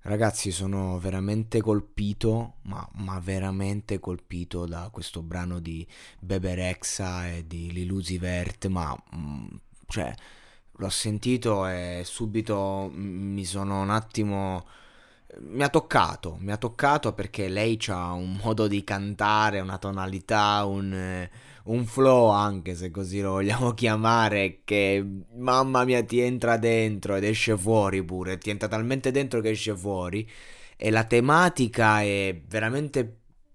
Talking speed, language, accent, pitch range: 130 wpm, Italian, native, 95-120 Hz